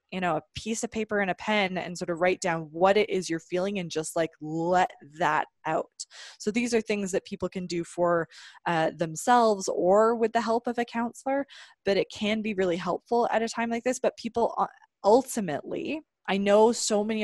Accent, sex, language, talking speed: American, female, English, 210 wpm